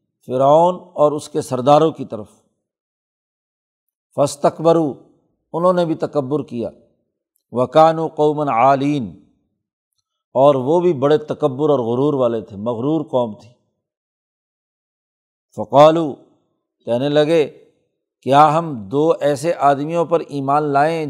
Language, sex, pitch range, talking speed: Urdu, male, 140-165 Hz, 115 wpm